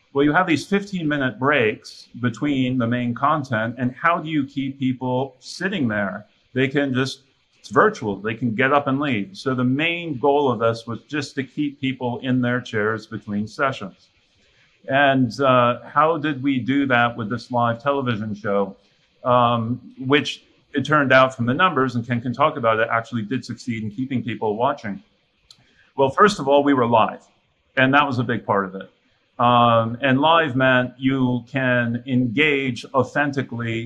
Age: 40-59